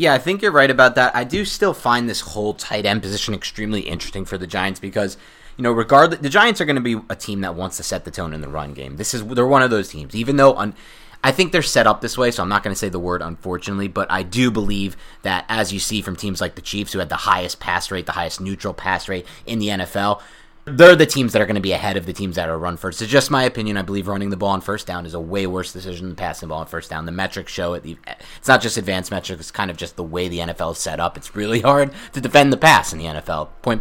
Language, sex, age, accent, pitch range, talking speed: English, male, 30-49, American, 95-135 Hz, 295 wpm